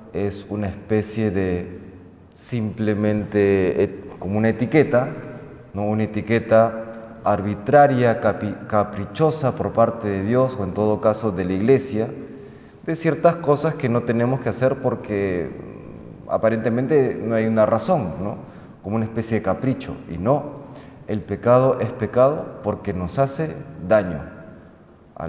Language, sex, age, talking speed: Spanish, male, 30-49, 135 wpm